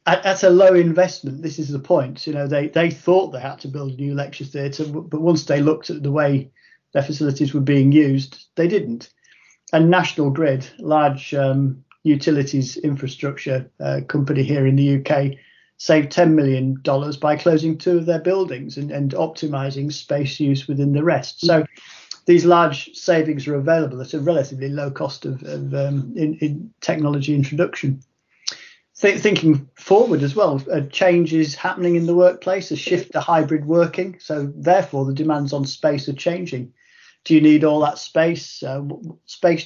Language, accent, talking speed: English, British, 175 wpm